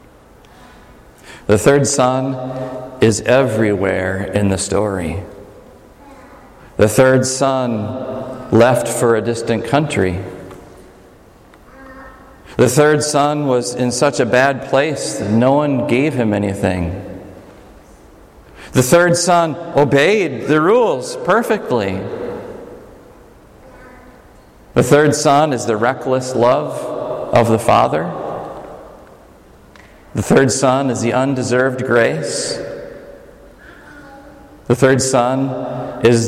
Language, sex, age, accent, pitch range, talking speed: English, male, 40-59, American, 100-130 Hz, 100 wpm